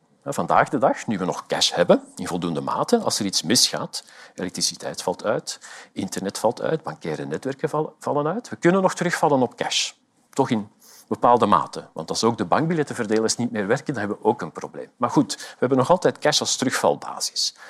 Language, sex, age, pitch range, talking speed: Dutch, male, 50-69, 115-175 Hz, 195 wpm